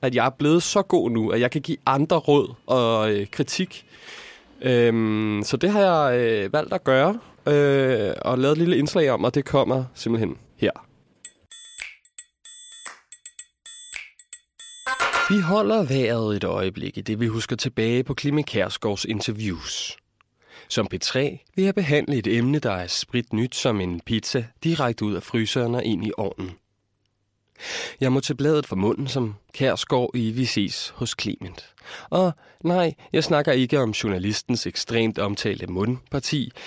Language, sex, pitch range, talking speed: Danish, male, 110-165 Hz, 155 wpm